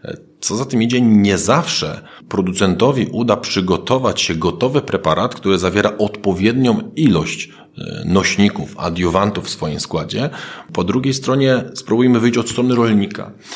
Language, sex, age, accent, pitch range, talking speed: Polish, male, 40-59, native, 85-110 Hz, 130 wpm